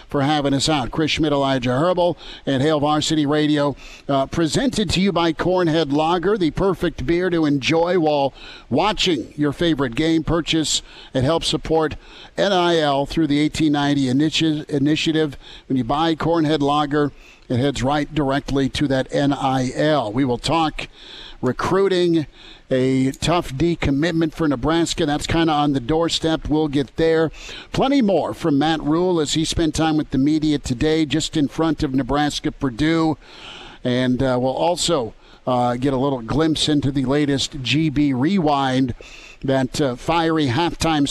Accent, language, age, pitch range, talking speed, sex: American, English, 50-69, 140-165 Hz, 155 wpm, male